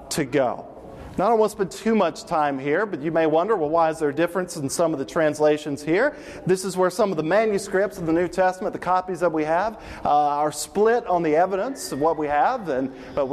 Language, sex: English, male